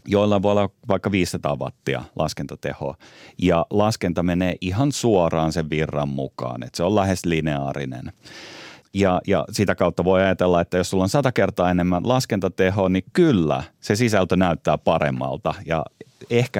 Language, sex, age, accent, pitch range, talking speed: Finnish, male, 30-49, native, 85-105 Hz, 150 wpm